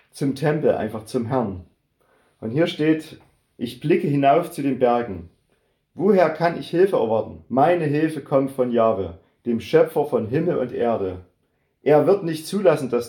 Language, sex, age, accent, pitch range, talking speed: German, male, 40-59, German, 115-140 Hz, 160 wpm